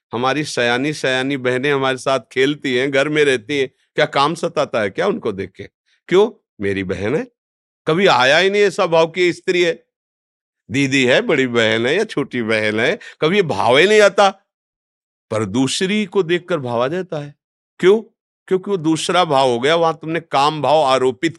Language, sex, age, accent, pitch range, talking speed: Hindi, male, 50-69, native, 120-175 Hz, 190 wpm